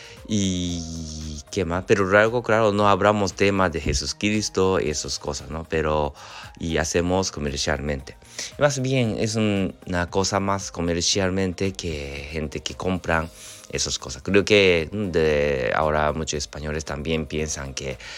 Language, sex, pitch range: Japanese, male, 75-95 Hz